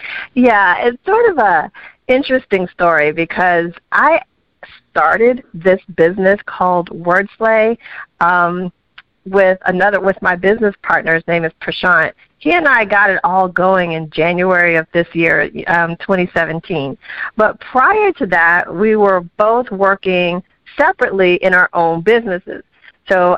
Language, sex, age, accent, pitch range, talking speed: English, female, 40-59, American, 180-250 Hz, 135 wpm